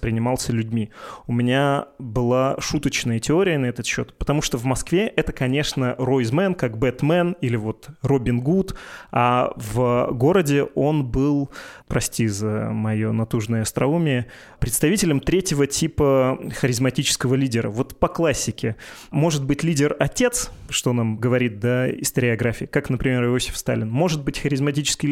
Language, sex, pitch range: Russian, male, 120-145 Hz